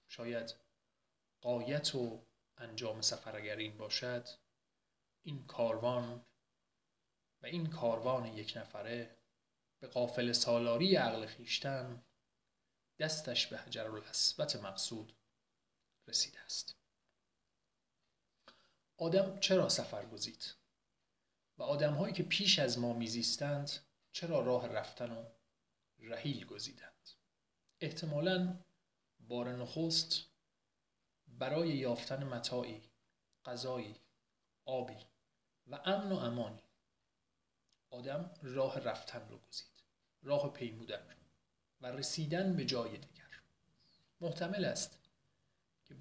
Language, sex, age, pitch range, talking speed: Persian, male, 30-49, 115-145 Hz, 95 wpm